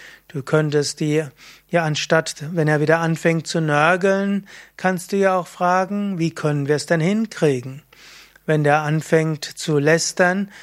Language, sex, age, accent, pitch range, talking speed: German, male, 30-49, German, 155-185 Hz, 150 wpm